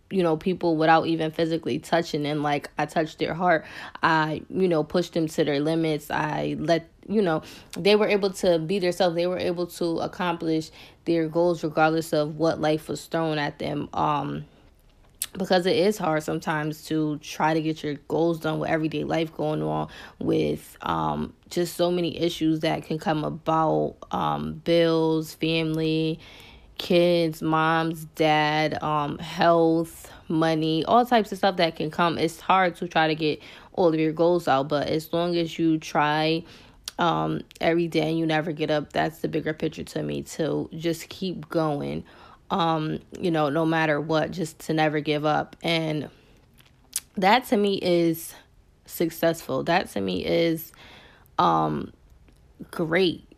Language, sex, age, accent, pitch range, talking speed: English, female, 20-39, American, 155-170 Hz, 165 wpm